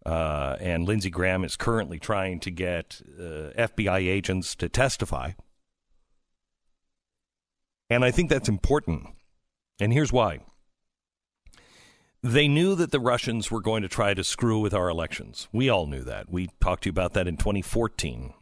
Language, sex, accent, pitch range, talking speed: English, male, American, 90-120 Hz, 155 wpm